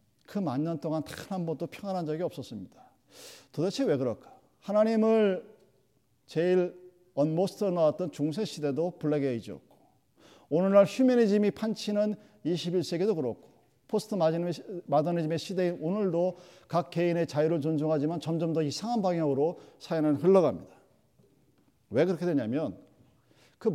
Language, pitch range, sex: Korean, 155-210 Hz, male